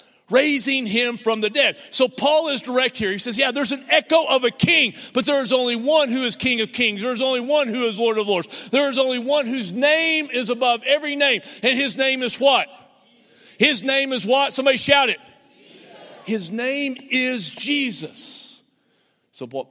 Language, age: English, 50-69